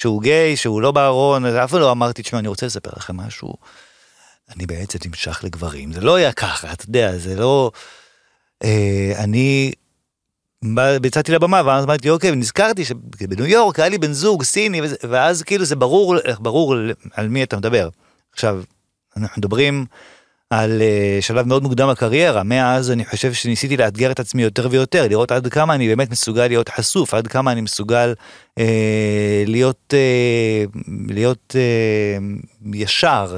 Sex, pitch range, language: male, 110-135 Hz, Hebrew